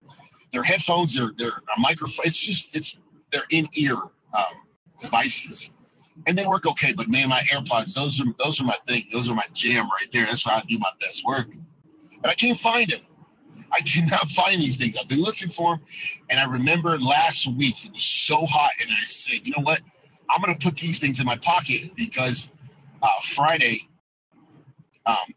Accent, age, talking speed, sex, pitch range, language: American, 40-59, 200 wpm, male, 120-170 Hz, English